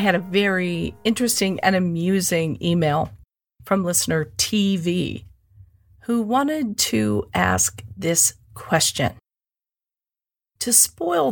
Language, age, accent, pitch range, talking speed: English, 40-59, American, 155-220 Hz, 100 wpm